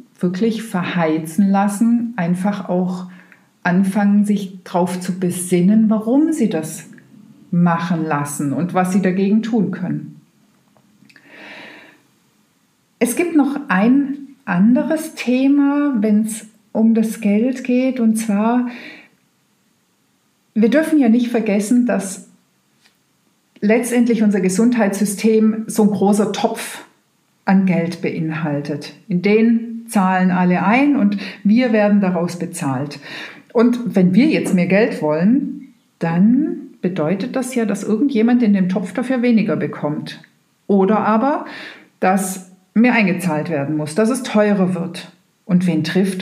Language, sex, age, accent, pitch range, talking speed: German, female, 50-69, German, 185-230 Hz, 120 wpm